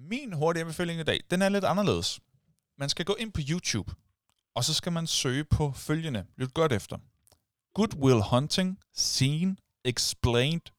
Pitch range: 110-150 Hz